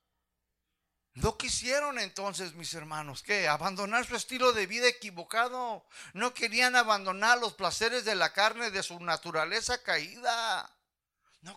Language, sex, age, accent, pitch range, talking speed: Spanish, male, 50-69, Mexican, 175-245 Hz, 130 wpm